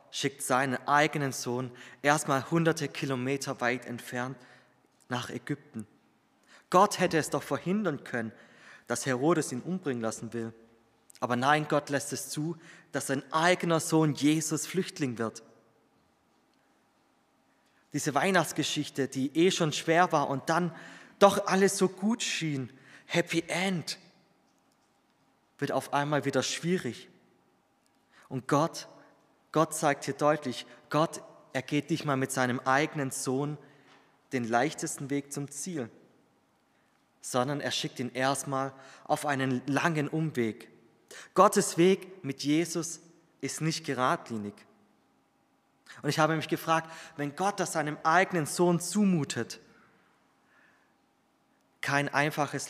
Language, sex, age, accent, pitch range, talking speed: German, male, 20-39, German, 130-165 Hz, 120 wpm